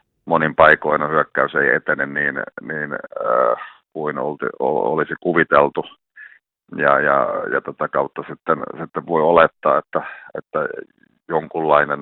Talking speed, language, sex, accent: 130 wpm, Finnish, male, native